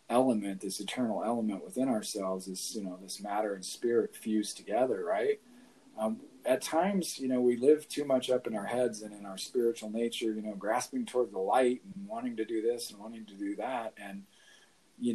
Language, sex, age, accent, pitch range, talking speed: English, male, 40-59, American, 100-125 Hz, 205 wpm